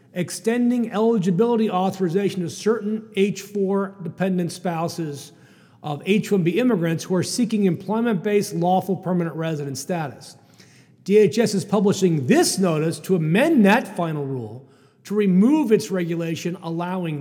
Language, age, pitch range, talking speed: English, 40-59, 165-210 Hz, 120 wpm